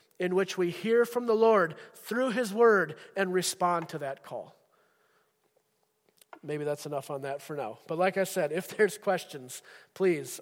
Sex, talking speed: male, 175 wpm